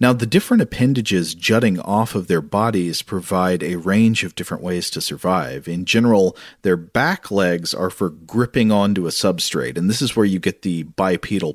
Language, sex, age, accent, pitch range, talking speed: English, male, 40-59, American, 85-110 Hz, 185 wpm